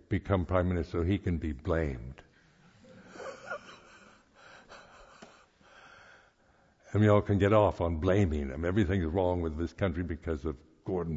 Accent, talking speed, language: American, 140 wpm, English